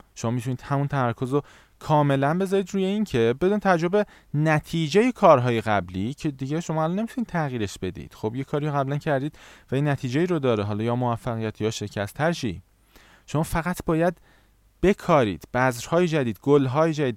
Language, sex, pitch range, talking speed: Persian, male, 105-150 Hz, 170 wpm